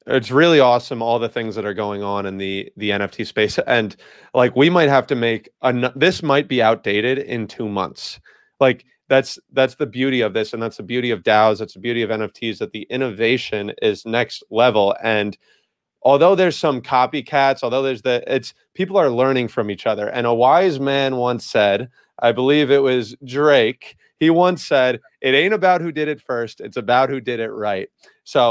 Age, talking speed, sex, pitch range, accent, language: 30-49, 205 wpm, male, 115-145 Hz, American, English